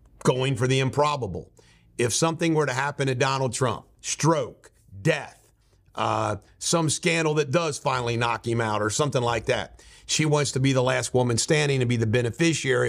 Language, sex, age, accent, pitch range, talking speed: English, male, 50-69, American, 125-150 Hz, 180 wpm